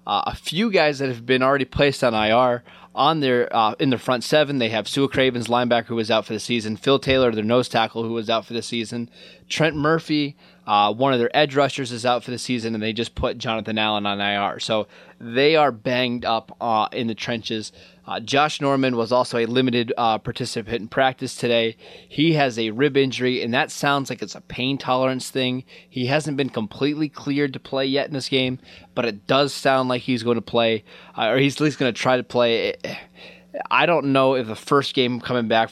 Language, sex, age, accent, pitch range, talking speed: English, male, 20-39, American, 110-135 Hz, 225 wpm